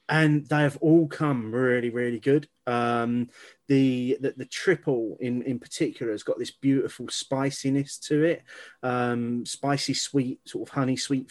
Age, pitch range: 30-49, 125-150 Hz